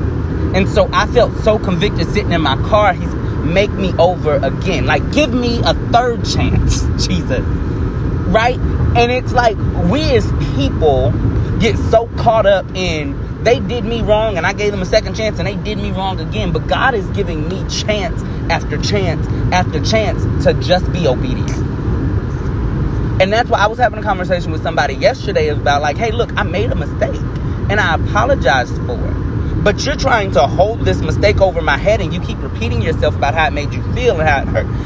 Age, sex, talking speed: 30-49, male, 195 wpm